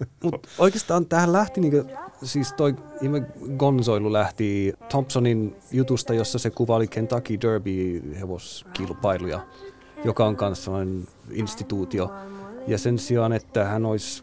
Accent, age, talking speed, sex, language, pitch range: native, 30-49, 120 wpm, male, Finnish, 100-125 Hz